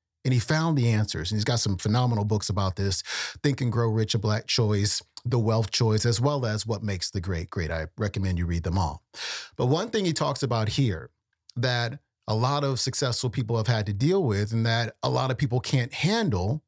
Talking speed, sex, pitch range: 225 wpm, male, 105-135 Hz